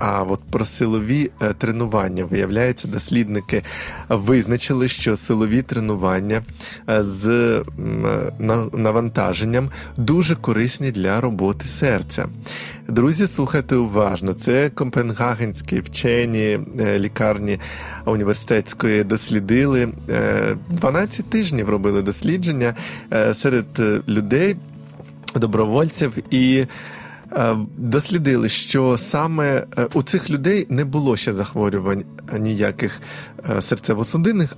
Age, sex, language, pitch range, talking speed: 20-39, male, Ukrainian, 105-140 Hz, 80 wpm